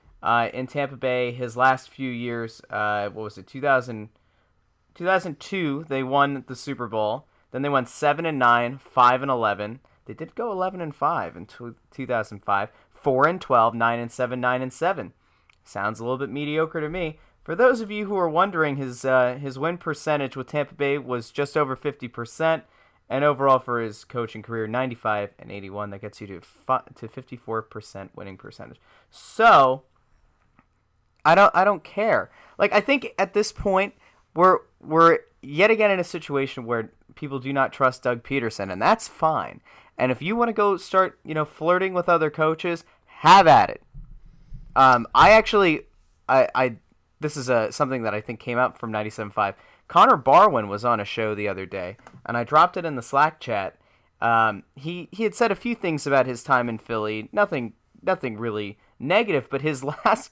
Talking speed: 195 wpm